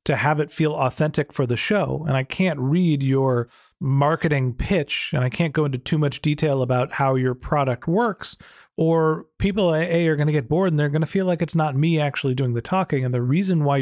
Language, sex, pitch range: English, male, 130-160 Hz